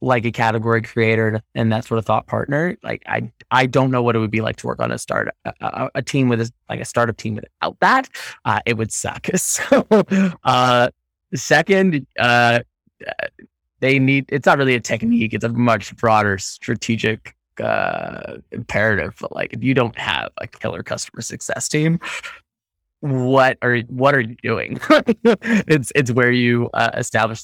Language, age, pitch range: English, 20-39, 110-135 Hz